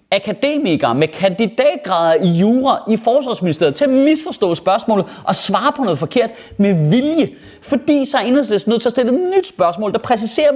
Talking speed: 170 wpm